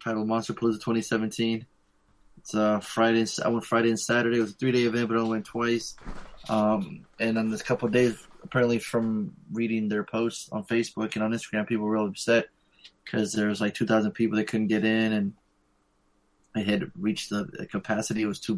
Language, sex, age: English, male, 20-39